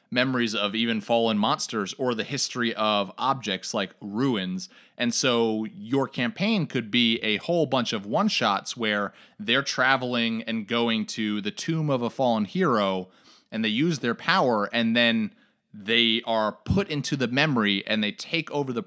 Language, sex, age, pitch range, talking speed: English, male, 30-49, 115-150 Hz, 170 wpm